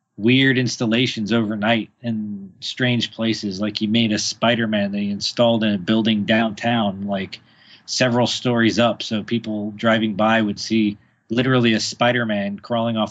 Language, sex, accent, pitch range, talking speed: English, male, American, 110-120 Hz, 150 wpm